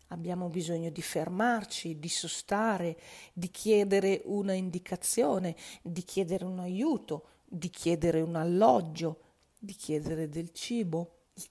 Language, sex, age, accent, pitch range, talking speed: Italian, female, 40-59, native, 170-220 Hz, 120 wpm